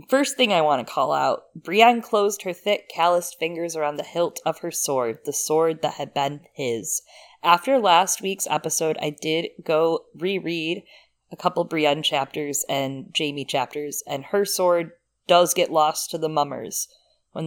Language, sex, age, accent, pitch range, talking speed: English, female, 20-39, American, 135-170 Hz, 175 wpm